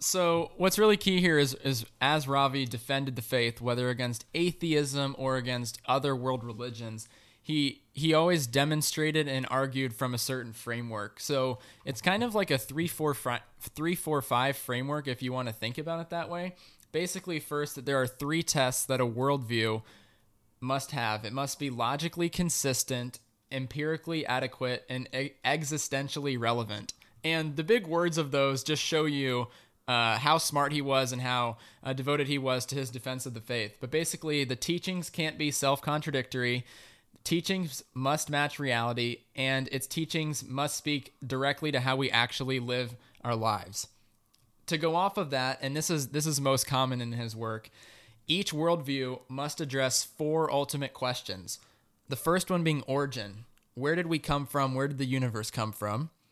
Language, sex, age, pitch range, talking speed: English, male, 20-39, 120-155 Hz, 170 wpm